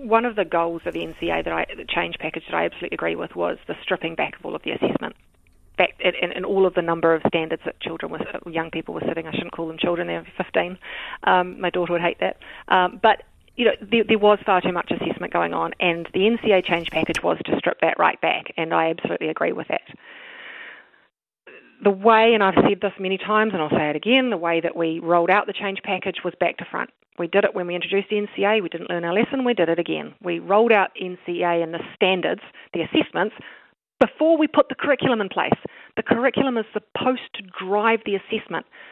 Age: 30-49